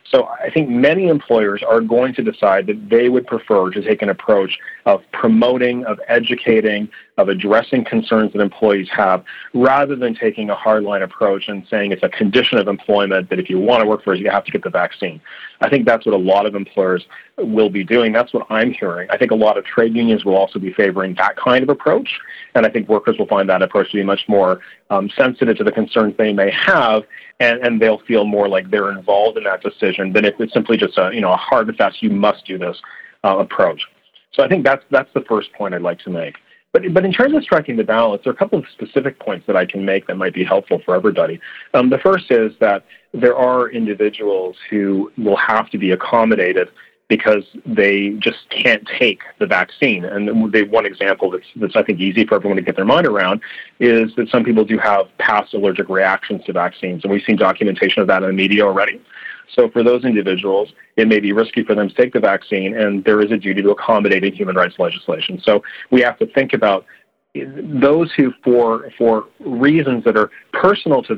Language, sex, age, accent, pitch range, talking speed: English, male, 40-59, American, 100-125 Hz, 225 wpm